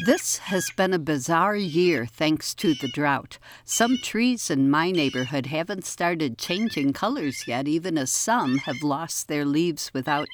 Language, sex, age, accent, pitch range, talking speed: English, female, 60-79, American, 135-185 Hz, 165 wpm